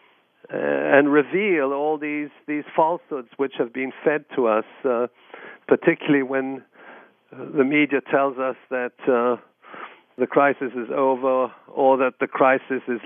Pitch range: 120-140 Hz